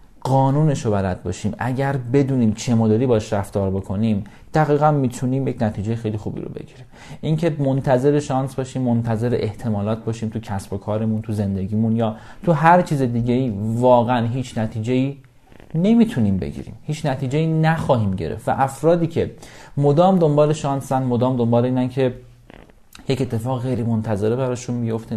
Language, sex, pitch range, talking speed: Persian, male, 110-140 Hz, 150 wpm